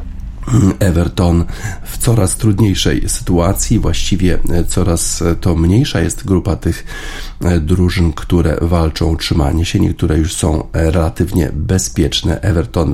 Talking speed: 110 wpm